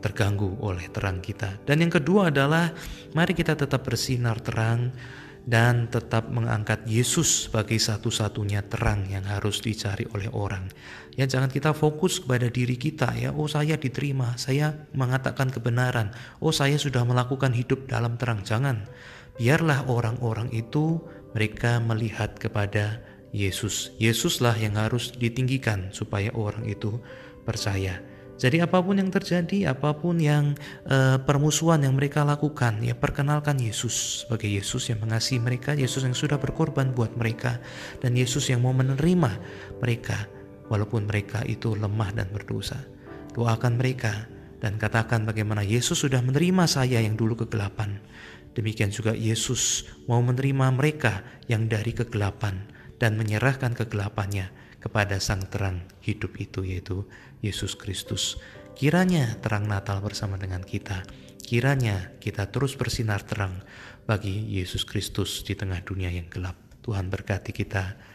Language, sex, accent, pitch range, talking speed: Indonesian, male, native, 105-130 Hz, 135 wpm